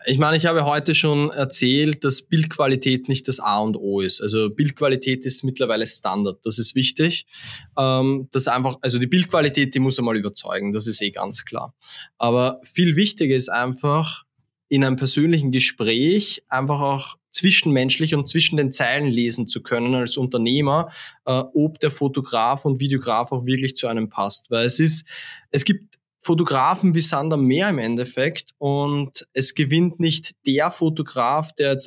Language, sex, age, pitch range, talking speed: German, male, 20-39, 130-160 Hz, 165 wpm